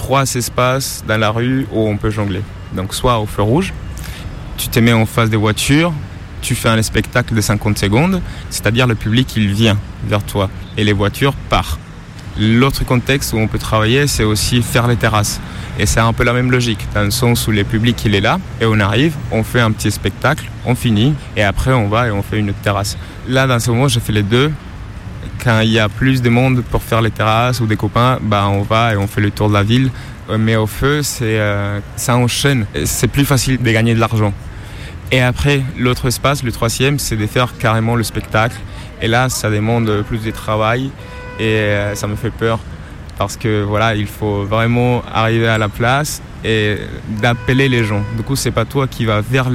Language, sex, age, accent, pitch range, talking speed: French, male, 20-39, French, 105-125 Hz, 220 wpm